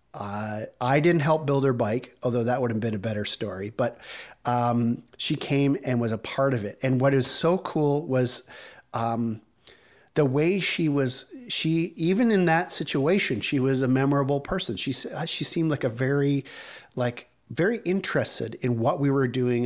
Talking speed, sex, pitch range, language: 185 wpm, male, 120-145 Hz, English